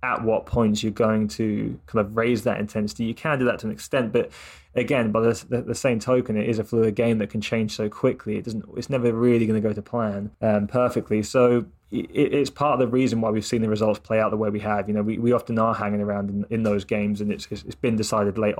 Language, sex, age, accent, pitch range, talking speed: English, male, 20-39, British, 105-115 Hz, 270 wpm